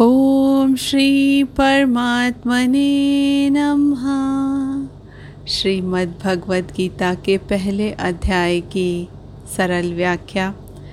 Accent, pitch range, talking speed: native, 175-210 Hz, 70 wpm